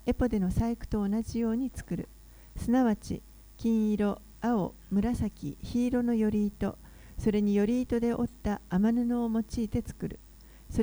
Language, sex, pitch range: Japanese, female, 190-235 Hz